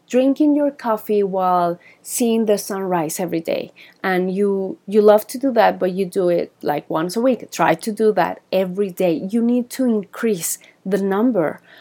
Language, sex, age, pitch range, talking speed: English, female, 30-49, 180-225 Hz, 185 wpm